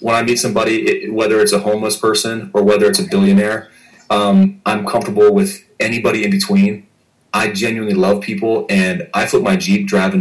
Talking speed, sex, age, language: 190 wpm, male, 30-49, English